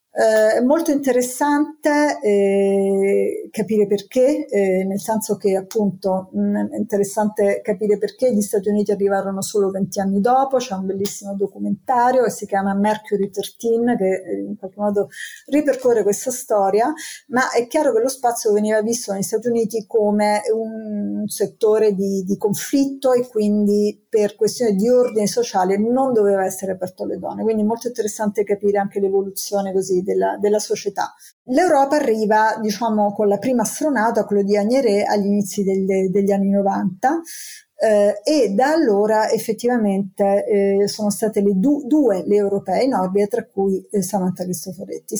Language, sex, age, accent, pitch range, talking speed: Italian, female, 50-69, native, 200-235 Hz, 160 wpm